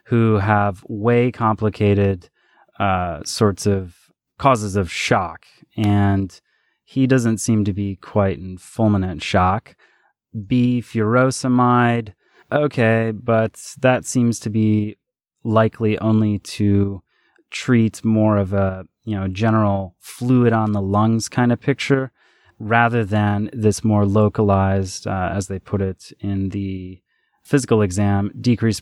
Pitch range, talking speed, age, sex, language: 100-120 Hz, 125 wpm, 30-49, male, English